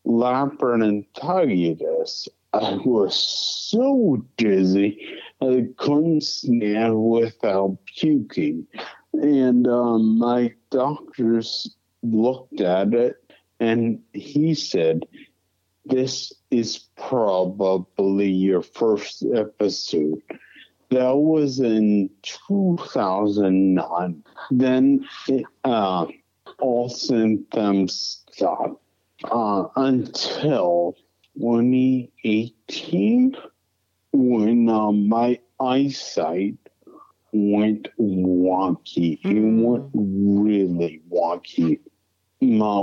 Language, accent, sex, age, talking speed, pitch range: English, American, male, 50-69, 70 wpm, 100-130 Hz